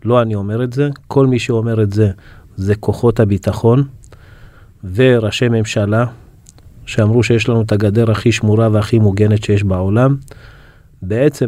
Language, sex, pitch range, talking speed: Hebrew, male, 105-130 Hz, 140 wpm